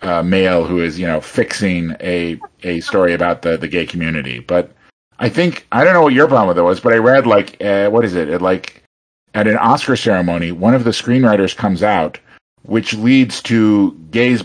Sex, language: male, English